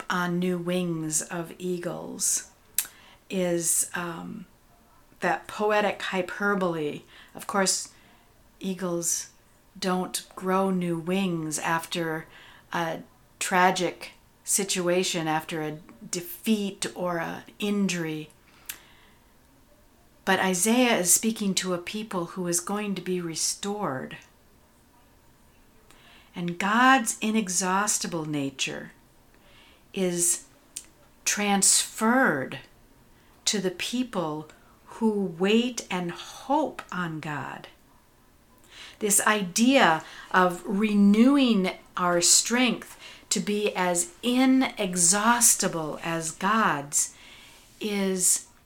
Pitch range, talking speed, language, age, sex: 165-205 Hz, 85 wpm, English, 50-69, female